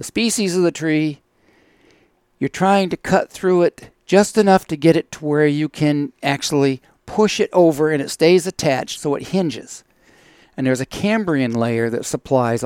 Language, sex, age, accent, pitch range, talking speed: English, male, 60-79, American, 130-165 Hz, 175 wpm